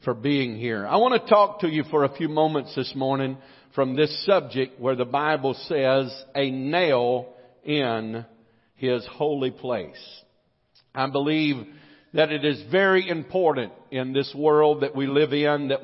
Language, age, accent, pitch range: English, 50-69, American, 130-160 Hz